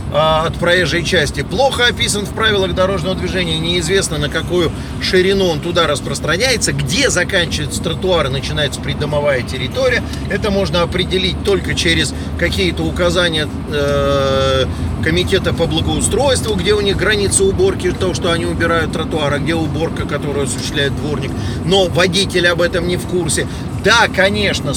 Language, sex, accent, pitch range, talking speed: Russian, male, native, 135-180 Hz, 140 wpm